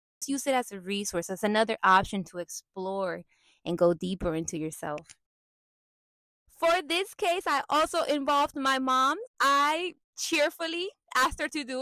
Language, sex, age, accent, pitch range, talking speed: English, female, 20-39, American, 215-300 Hz, 145 wpm